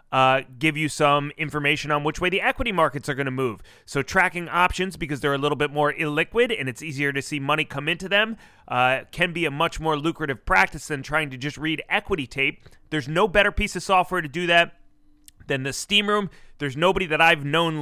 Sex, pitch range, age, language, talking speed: male, 140-180 Hz, 30-49, English, 225 wpm